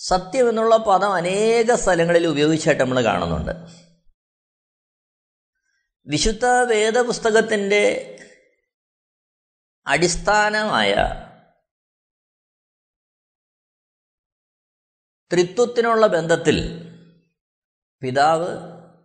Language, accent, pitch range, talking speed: Malayalam, native, 135-230 Hz, 45 wpm